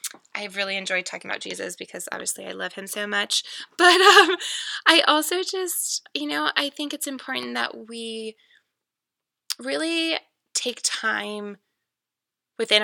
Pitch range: 200-230 Hz